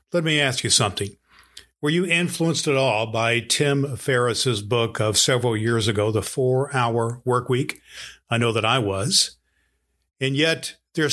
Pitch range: 115-150 Hz